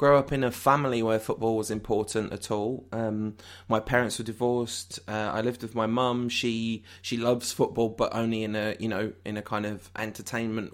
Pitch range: 100-120 Hz